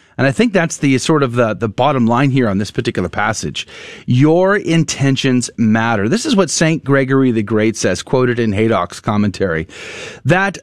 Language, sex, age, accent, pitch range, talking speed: English, male, 30-49, American, 125-195 Hz, 180 wpm